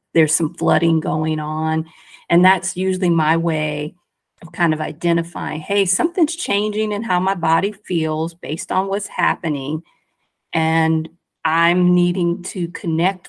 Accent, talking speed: American, 140 wpm